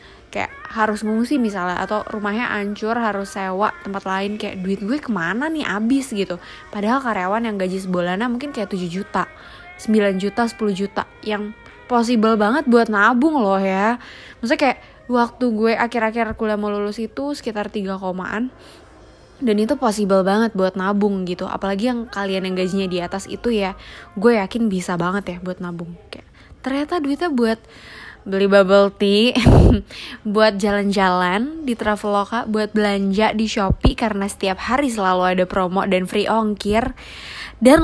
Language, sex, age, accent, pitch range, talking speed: Indonesian, female, 20-39, native, 195-230 Hz, 155 wpm